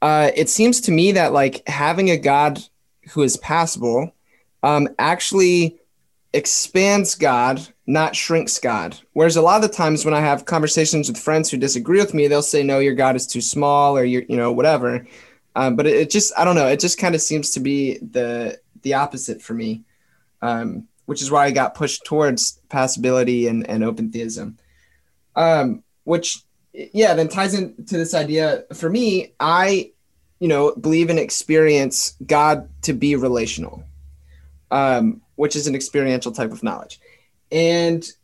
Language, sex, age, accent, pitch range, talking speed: English, male, 20-39, American, 130-170 Hz, 175 wpm